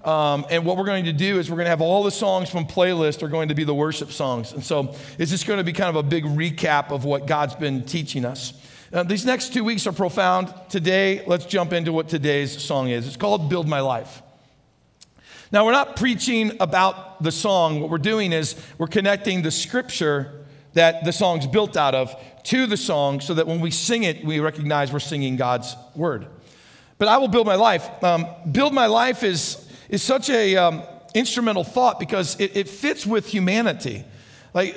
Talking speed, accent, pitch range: 210 wpm, American, 145-205 Hz